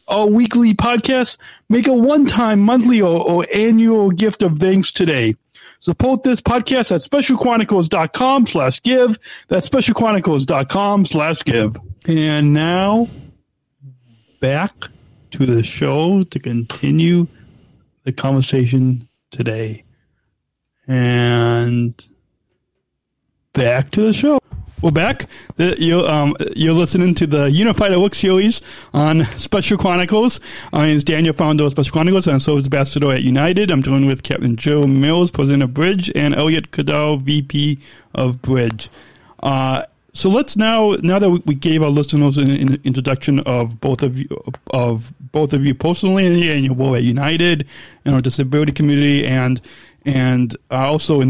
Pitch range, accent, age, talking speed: 130-185 Hz, American, 40-59, 135 wpm